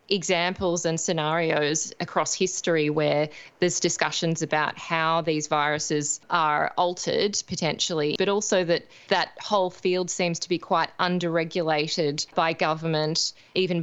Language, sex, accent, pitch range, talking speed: English, female, Australian, 160-185 Hz, 125 wpm